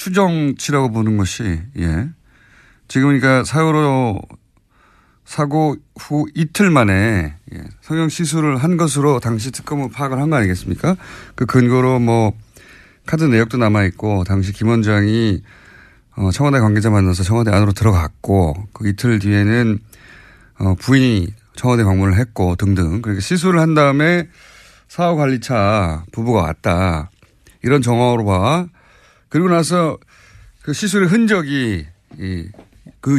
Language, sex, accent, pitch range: Korean, male, native, 100-145 Hz